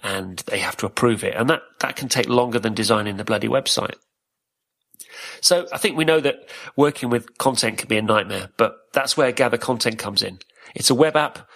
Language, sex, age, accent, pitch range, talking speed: English, male, 40-59, British, 110-135 Hz, 215 wpm